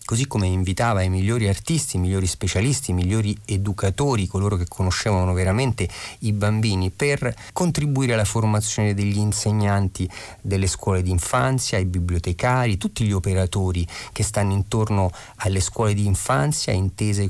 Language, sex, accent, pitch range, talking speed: Italian, male, native, 95-110 Hz, 140 wpm